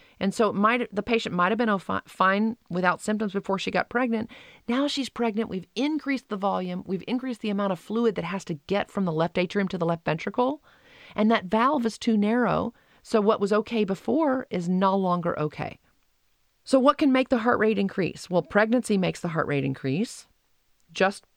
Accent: American